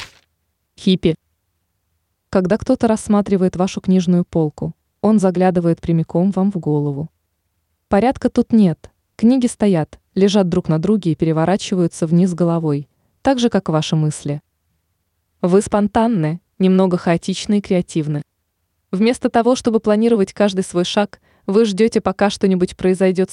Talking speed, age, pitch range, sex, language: 125 wpm, 20-39, 155-205 Hz, female, Russian